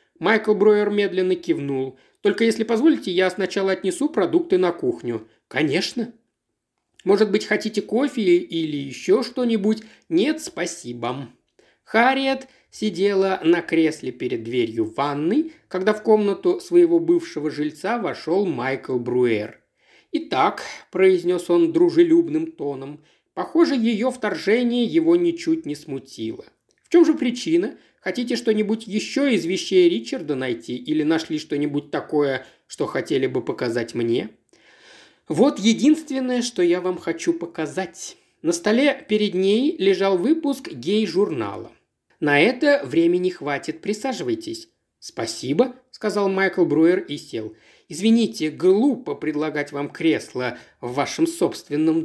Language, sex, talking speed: Russian, male, 120 wpm